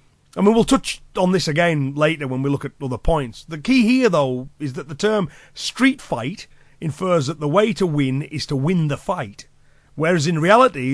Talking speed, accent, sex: 215 wpm, British, male